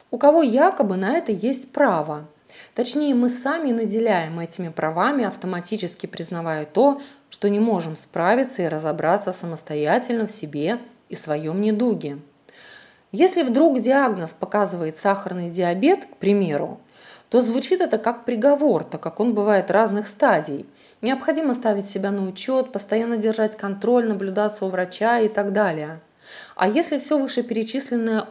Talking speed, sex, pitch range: 140 wpm, female, 180-245 Hz